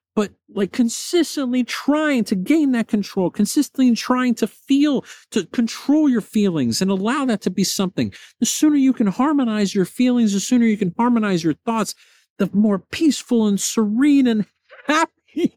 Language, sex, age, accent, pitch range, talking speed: English, male, 50-69, American, 170-240 Hz, 165 wpm